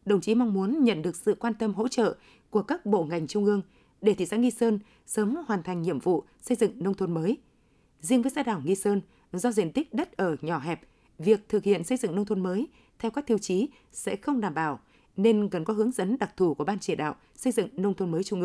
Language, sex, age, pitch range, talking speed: Vietnamese, female, 20-39, 185-230 Hz, 255 wpm